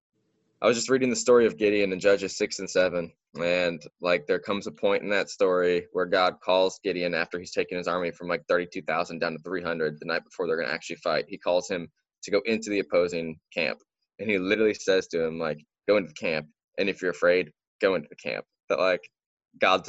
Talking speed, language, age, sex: 230 wpm, English, 10-29, male